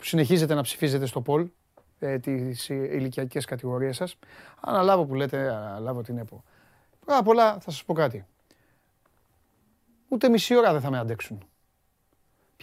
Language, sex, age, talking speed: Greek, male, 30-49, 105 wpm